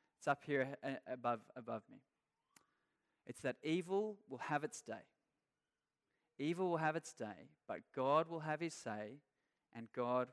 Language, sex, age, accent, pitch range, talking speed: English, male, 20-39, Australian, 125-155 Hz, 150 wpm